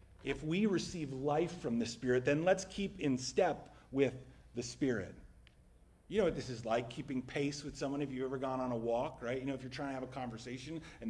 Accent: American